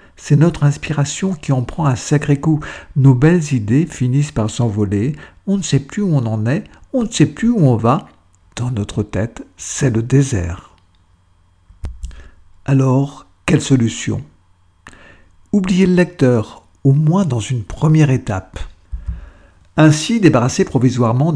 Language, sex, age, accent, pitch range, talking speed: French, male, 60-79, French, 110-155 Hz, 145 wpm